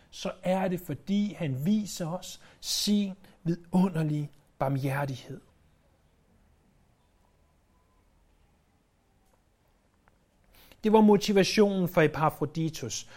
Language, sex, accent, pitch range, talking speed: Danish, male, native, 145-205 Hz, 70 wpm